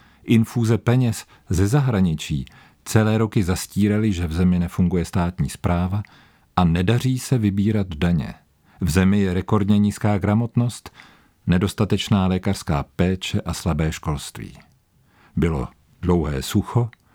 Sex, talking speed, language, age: male, 115 wpm, Czech, 50-69